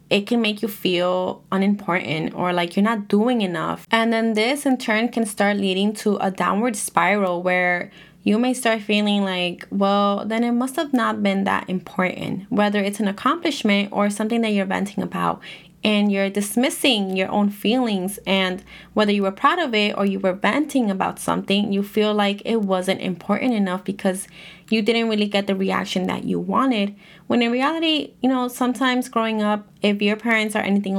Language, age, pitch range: English, 20-39, 185-225 Hz